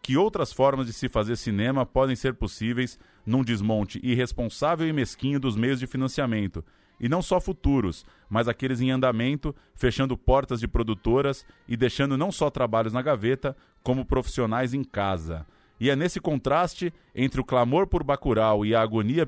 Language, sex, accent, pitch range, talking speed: Portuguese, male, Brazilian, 110-140 Hz, 170 wpm